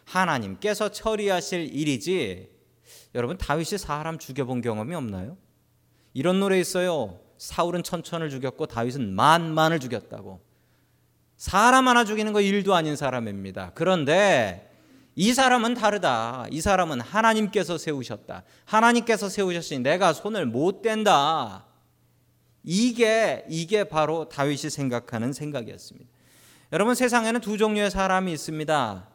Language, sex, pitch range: Korean, male, 135-205 Hz